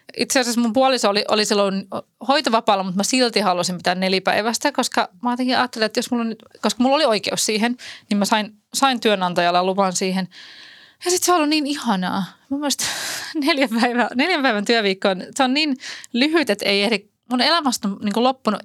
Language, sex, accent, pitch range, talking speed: Finnish, female, native, 195-260 Hz, 180 wpm